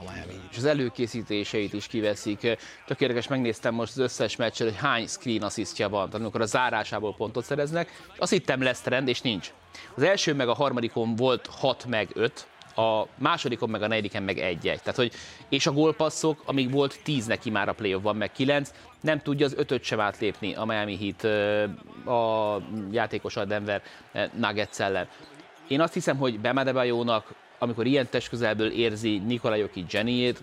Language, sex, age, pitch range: Hungarian, male, 30-49, 110-135 Hz